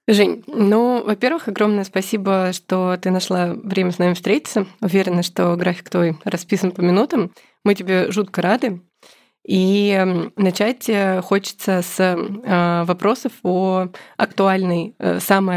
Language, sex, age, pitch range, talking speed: Russian, female, 20-39, 185-220 Hz, 120 wpm